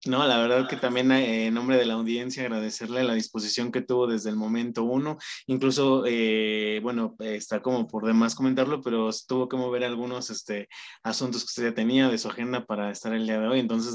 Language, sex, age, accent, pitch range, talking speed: Spanish, male, 20-39, Mexican, 115-135 Hz, 205 wpm